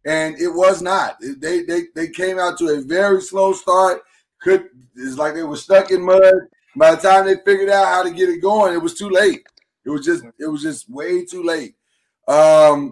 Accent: American